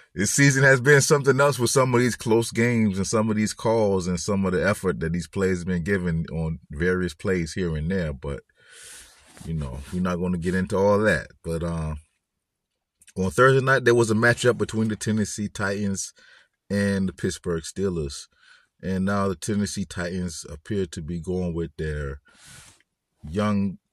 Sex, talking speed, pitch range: male, 185 wpm, 85-110 Hz